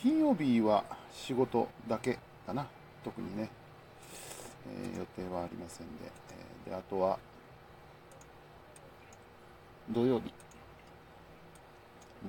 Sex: male